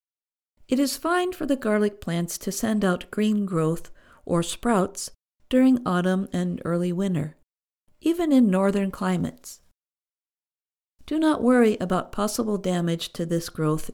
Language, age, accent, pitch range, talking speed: English, 50-69, American, 180-255 Hz, 140 wpm